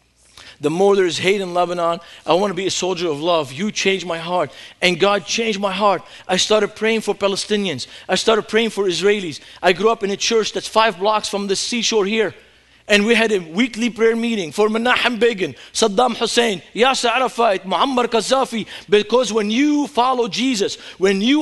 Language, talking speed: English, 195 wpm